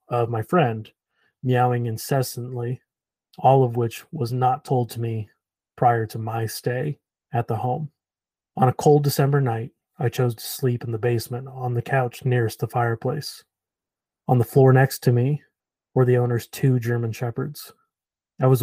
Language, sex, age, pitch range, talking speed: English, male, 30-49, 115-130 Hz, 170 wpm